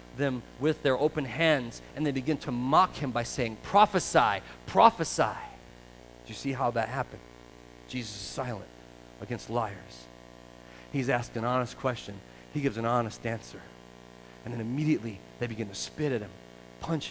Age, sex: 40-59, male